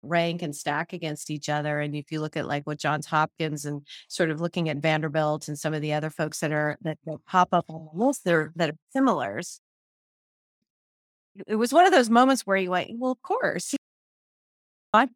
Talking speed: 205 wpm